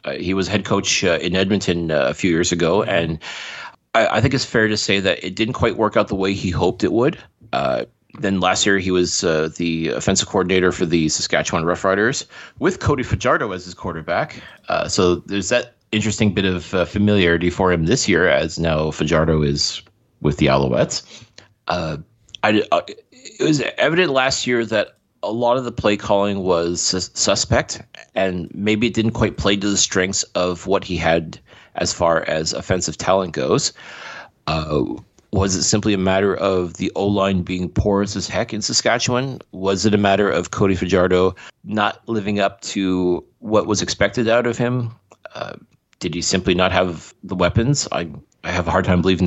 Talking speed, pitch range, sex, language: 190 wpm, 90-105 Hz, male, English